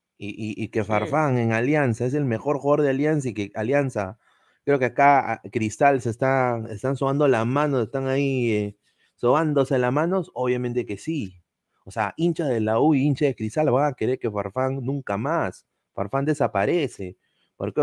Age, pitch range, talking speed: 30-49, 110-145 Hz, 180 wpm